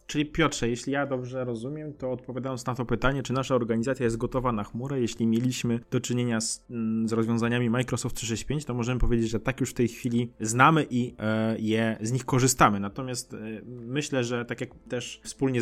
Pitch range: 115-130 Hz